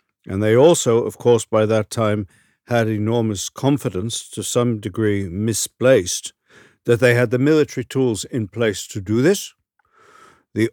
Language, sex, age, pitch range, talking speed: Hungarian, male, 50-69, 100-125 Hz, 150 wpm